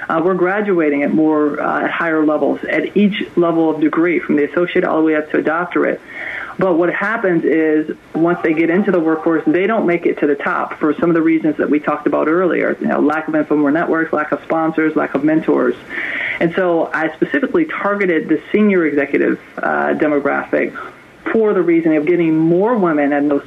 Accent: American